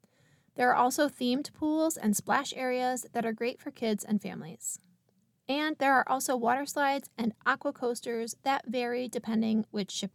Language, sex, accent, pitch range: English, female, American, 220-275 Hz